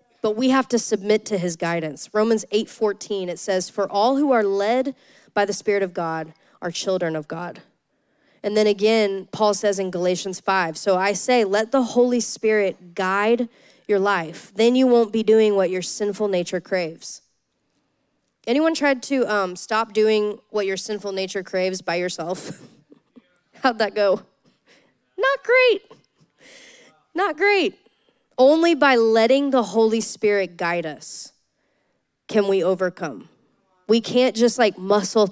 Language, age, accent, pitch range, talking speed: English, 20-39, American, 190-245 Hz, 155 wpm